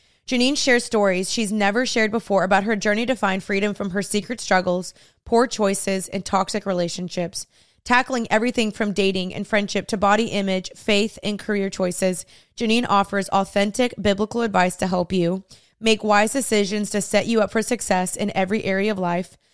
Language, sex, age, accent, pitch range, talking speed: English, female, 20-39, American, 190-230 Hz, 175 wpm